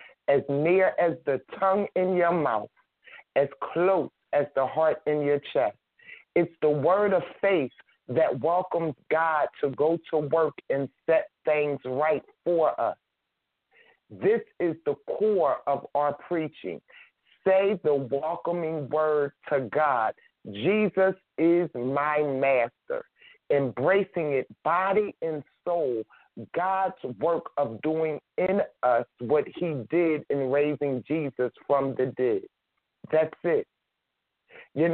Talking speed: 125 wpm